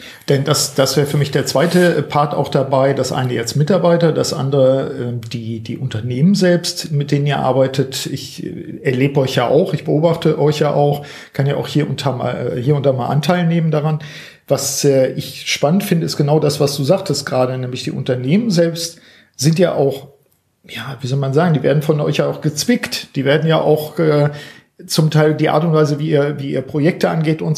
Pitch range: 135-165 Hz